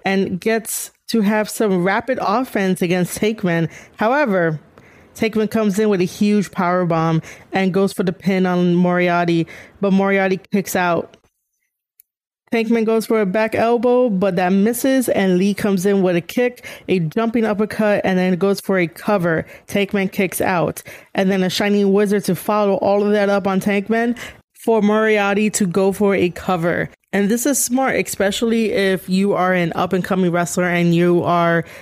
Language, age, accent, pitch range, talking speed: English, 20-39, American, 180-210 Hz, 170 wpm